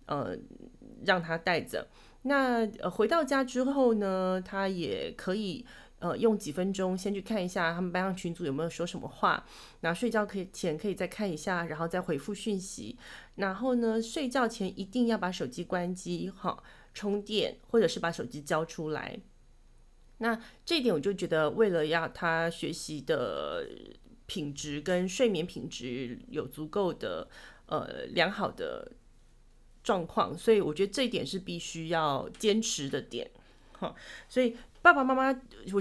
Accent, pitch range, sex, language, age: native, 175-230 Hz, female, Chinese, 30-49